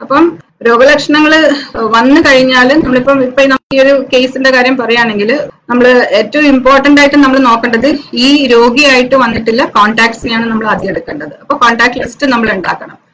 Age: 20-39